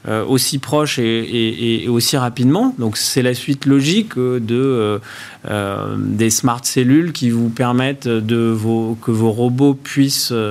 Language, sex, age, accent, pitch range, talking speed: French, male, 30-49, French, 110-135 Hz, 160 wpm